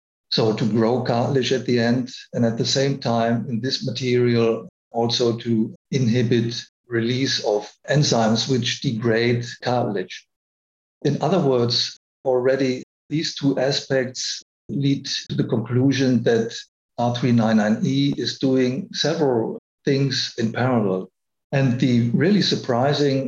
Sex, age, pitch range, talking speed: male, 50-69, 115-140 Hz, 120 wpm